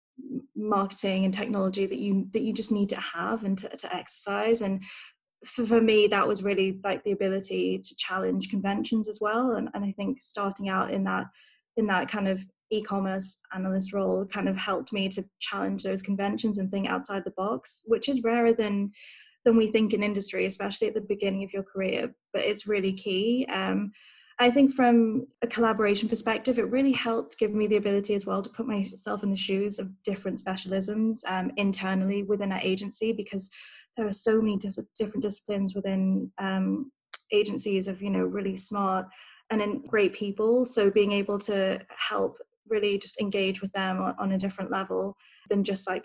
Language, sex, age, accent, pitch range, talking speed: English, female, 10-29, British, 195-225 Hz, 190 wpm